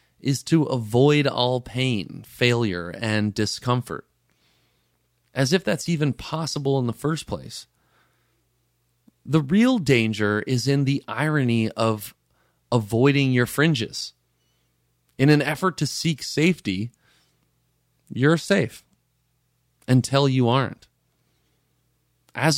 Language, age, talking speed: English, 30-49, 105 wpm